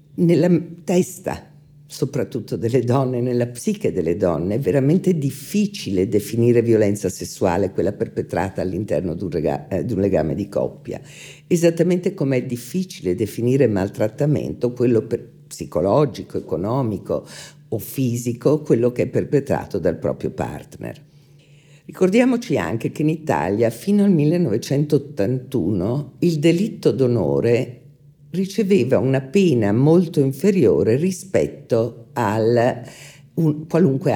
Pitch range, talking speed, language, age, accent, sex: 120-160 Hz, 110 wpm, Italian, 50-69, native, female